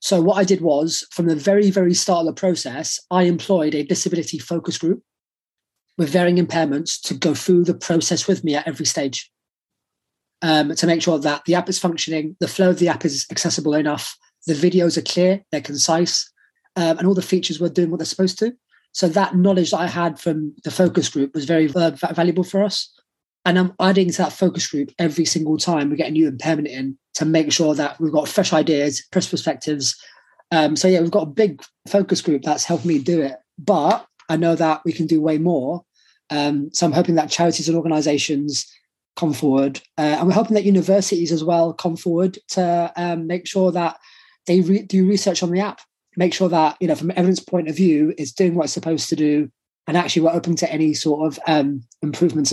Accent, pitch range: British, 155-180 Hz